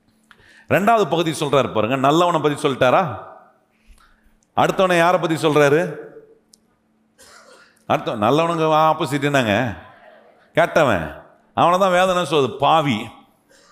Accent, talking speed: native, 85 wpm